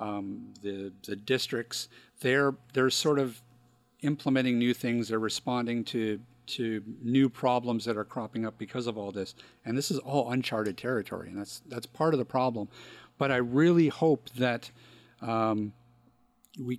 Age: 50-69